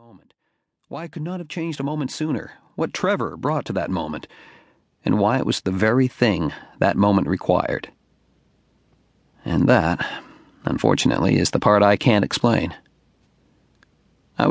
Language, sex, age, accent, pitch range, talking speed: English, male, 40-59, American, 105-130 Hz, 150 wpm